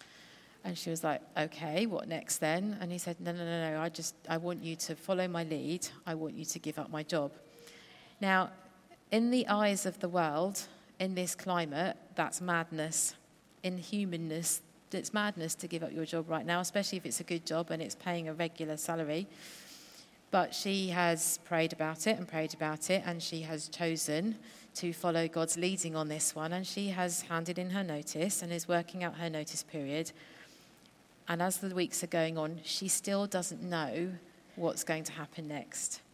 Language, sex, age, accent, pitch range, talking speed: English, female, 40-59, British, 160-180 Hz, 195 wpm